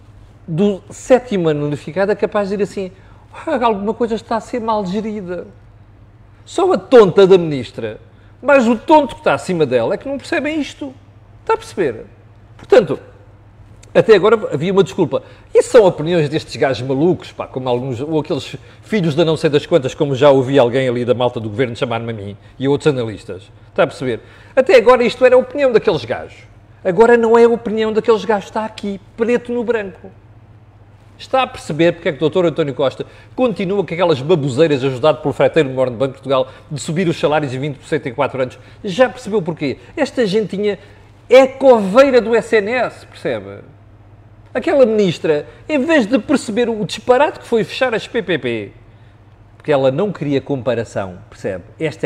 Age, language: 40-59, Portuguese